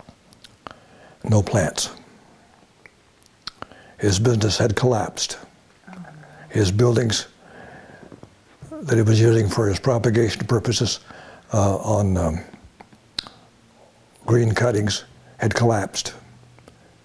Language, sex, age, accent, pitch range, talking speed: English, male, 60-79, American, 105-130 Hz, 80 wpm